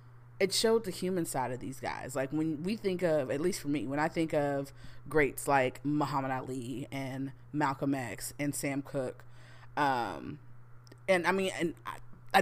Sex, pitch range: female, 130-165 Hz